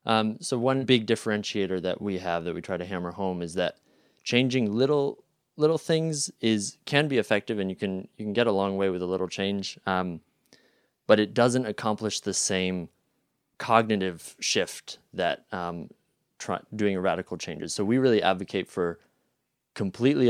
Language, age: English, 20-39